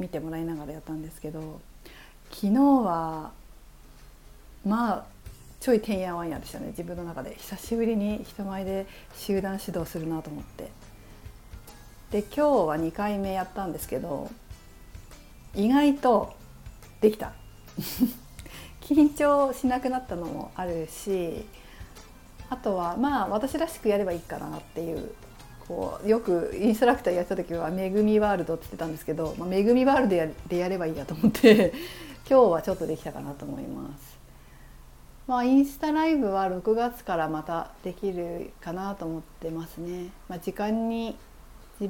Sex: female